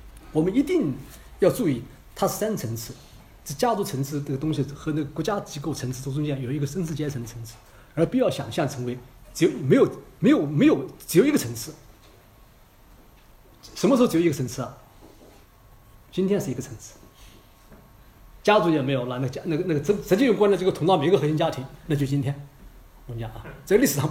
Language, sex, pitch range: Chinese, male, 130-215 Hz